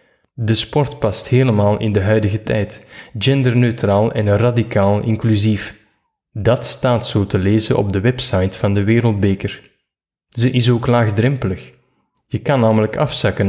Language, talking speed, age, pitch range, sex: Dutch, 140 wpm, 20-39, 105-125 Hz, male